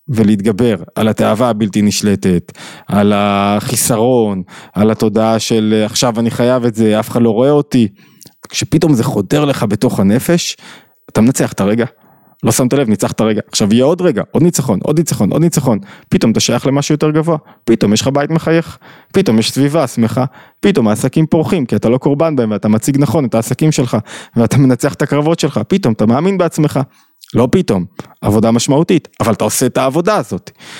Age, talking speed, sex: 20-39, 160 wpm, male